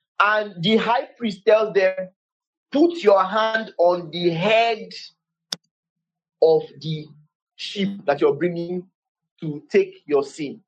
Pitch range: 170-235 Hz